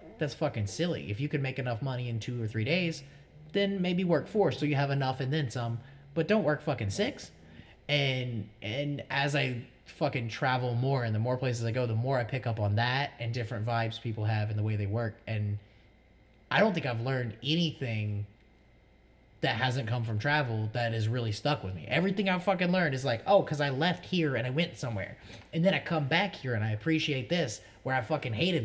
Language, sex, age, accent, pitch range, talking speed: English, male, 20-39, American, 115-165 Hz, 225 wpm